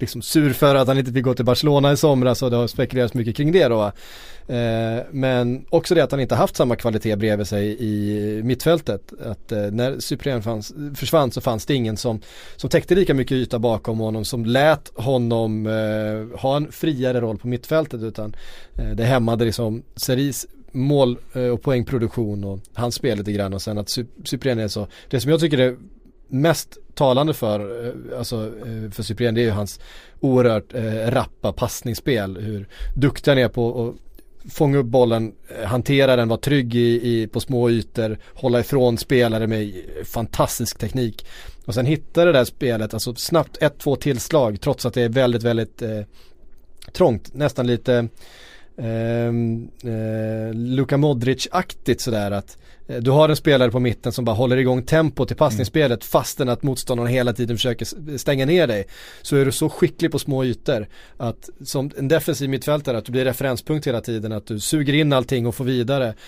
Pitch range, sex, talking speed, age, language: 115-135 Hz, male, 180 wpm, 30-49, Swedish